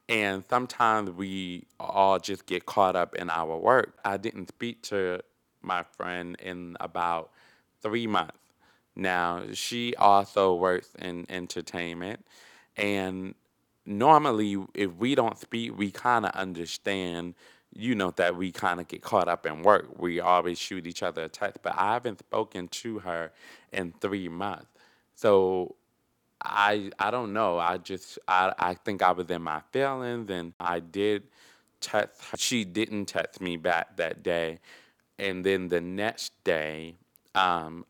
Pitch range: 90-105 Hz